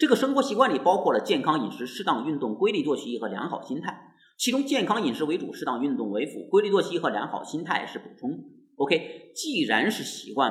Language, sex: Chinese, male